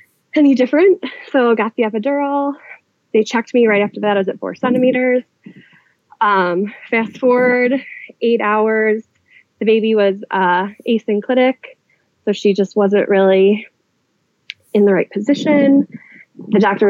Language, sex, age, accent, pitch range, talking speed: English, female, 20-39, American, 200-250 Hz, 135 wpm